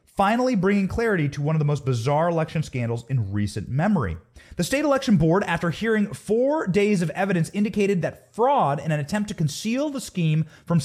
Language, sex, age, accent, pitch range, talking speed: English, male, 30-49, American, 140-200 Hz, 195 wpm